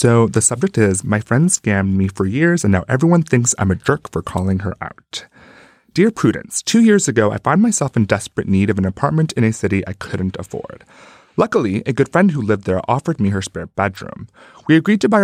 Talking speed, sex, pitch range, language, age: 225 wpm, male, 100-140 Hz, English, 30-49